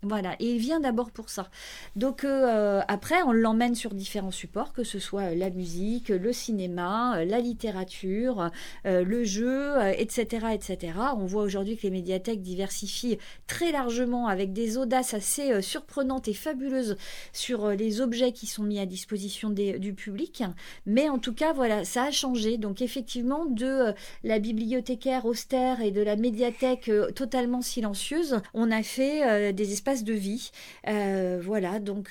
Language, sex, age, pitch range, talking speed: French, female, 40-59, 200-245 Hz, 170 wpm